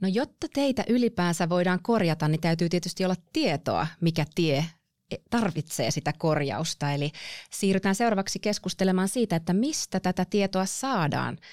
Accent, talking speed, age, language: native, 135 wpm, 30-49, Finnish